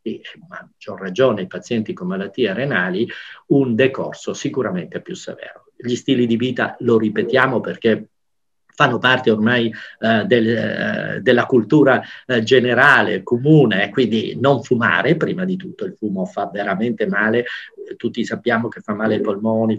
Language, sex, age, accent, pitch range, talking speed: Italian, male, 50-69, native, 110-145 Hz, 145 wpm